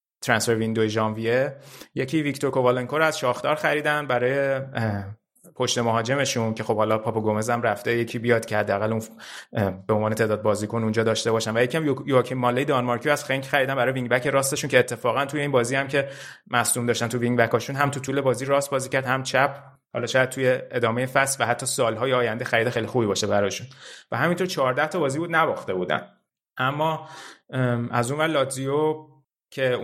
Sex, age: male, 30-49